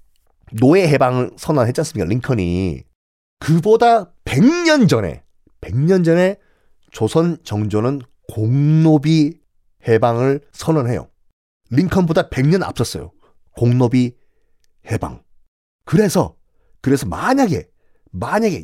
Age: 40-59